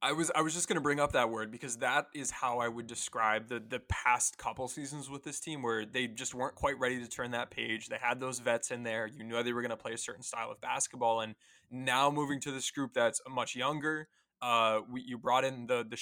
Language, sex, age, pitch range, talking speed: English, male, 20-39, 120-135 Hz, 260 wpm